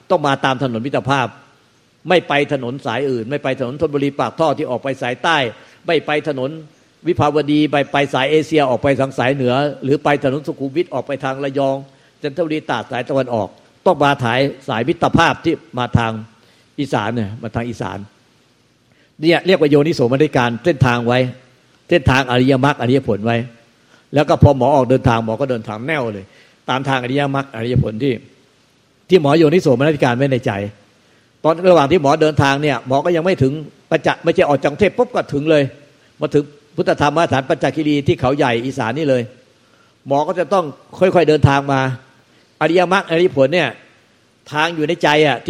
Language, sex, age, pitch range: Thai, male, 60-79, 130-155 Hz